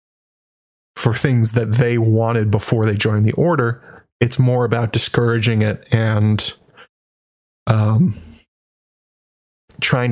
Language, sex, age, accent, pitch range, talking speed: English, male, 20-39, American, 110-125 Hz, 105 wpm